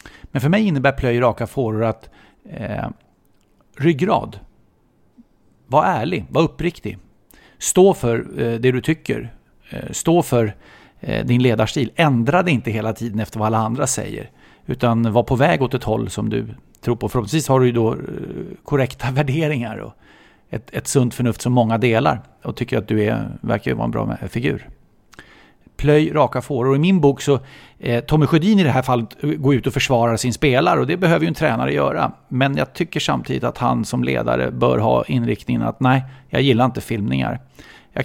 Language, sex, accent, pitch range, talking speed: English, male, Swedish, 115-145 Hz, 190 wpm